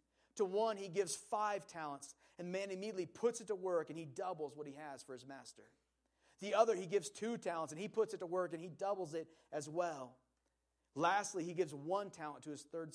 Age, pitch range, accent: 30-49, 135-205 Hz, American